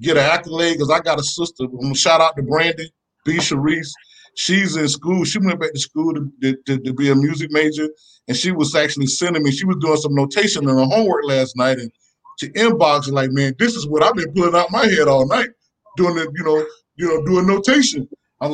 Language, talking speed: English, 235 wpm